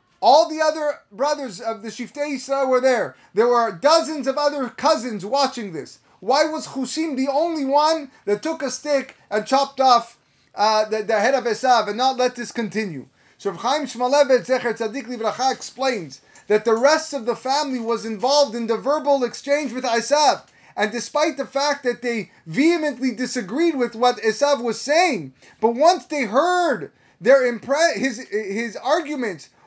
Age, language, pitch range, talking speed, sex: 30-49, English, 225-295 Hz, 170 wpm, male